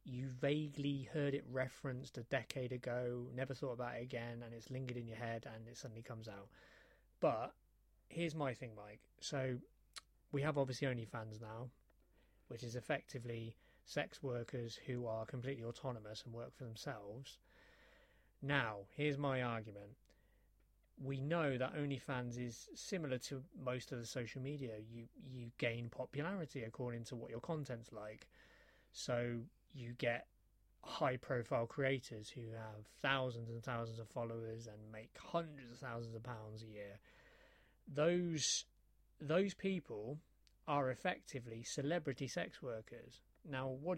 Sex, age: male, 30-49